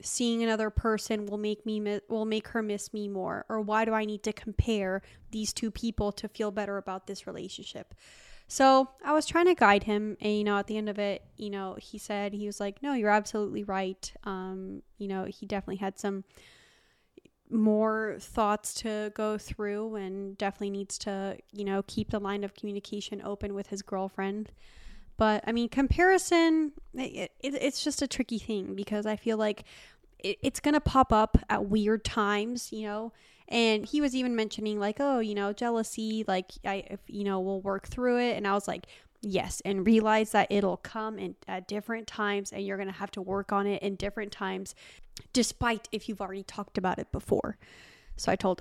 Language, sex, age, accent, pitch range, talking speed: English, female, 20-39, American, 200-225 Hz, 200 wpm